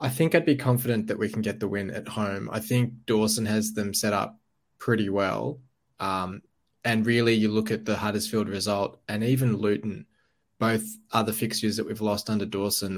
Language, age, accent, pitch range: English, 20-39, Australian, 105-115 Hz